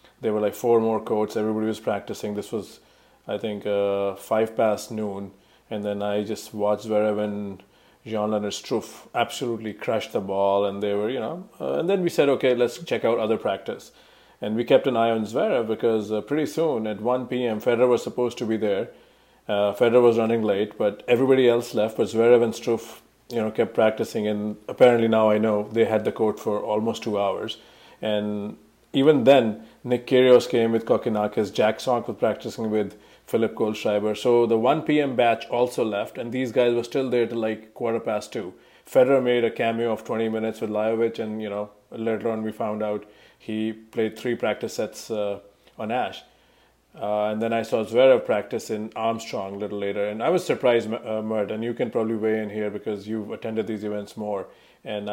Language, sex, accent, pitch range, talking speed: English, male, Indian, 105-120 Hz, 200 wpm